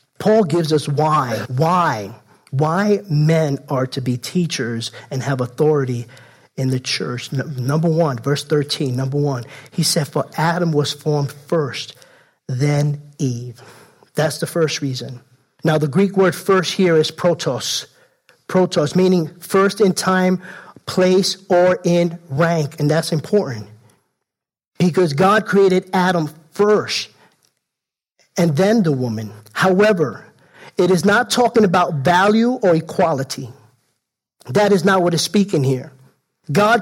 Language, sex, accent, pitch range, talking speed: English, male, American, 145-195 Hz, 135 wpm